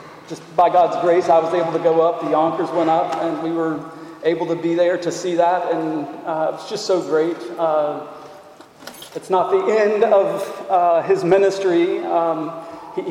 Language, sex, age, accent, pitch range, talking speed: English, male, 40-59, American, 165-195 Hz, 190 wpm